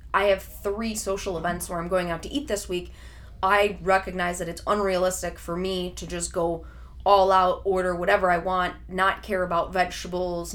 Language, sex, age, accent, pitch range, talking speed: English, female, 20-39, American, 170-190 Hz, 190 wpm